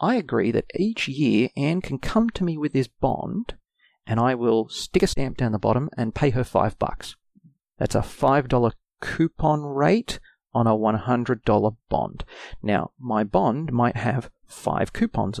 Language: English